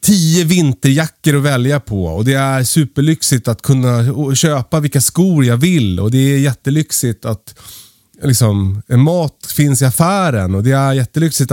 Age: 30-49